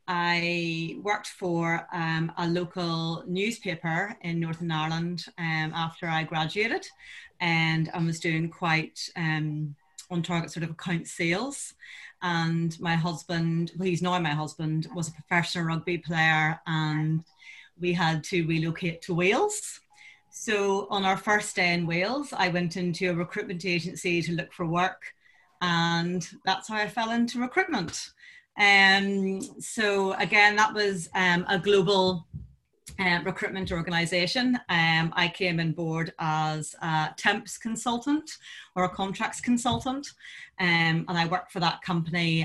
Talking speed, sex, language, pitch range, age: 140 wpm, female, English, 165-195 Hz, 30-49